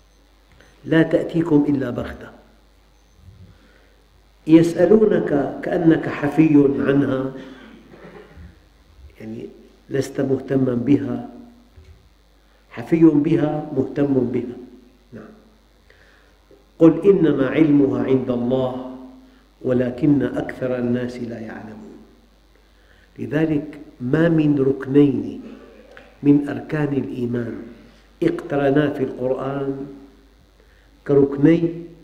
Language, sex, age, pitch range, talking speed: Arabic, male, 50-69, 120-150 Hz, 70 wpm